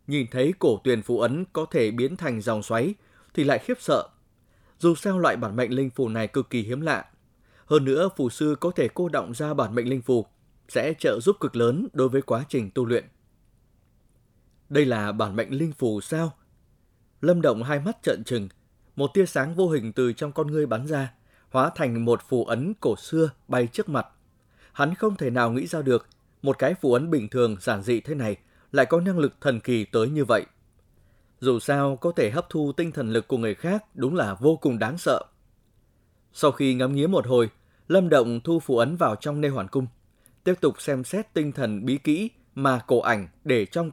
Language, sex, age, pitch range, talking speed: Vietnamese, male, 20-39, 115-150 Hz, 215 wpm